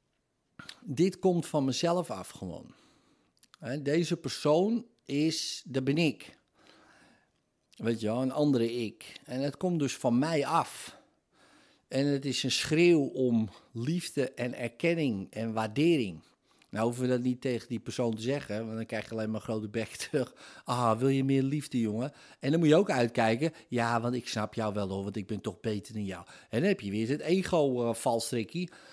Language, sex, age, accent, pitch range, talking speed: Dutch, male, 50-69, Dutch, 115-145 Hz, 185 wpm